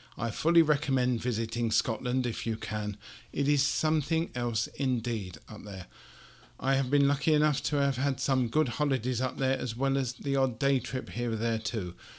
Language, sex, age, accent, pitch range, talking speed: English, male, 50-69, British, 115-140 Hz, 190 wpm